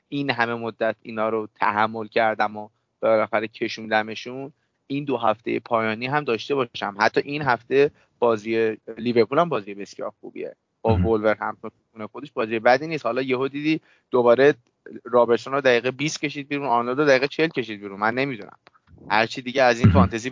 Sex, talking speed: male, 160 wpm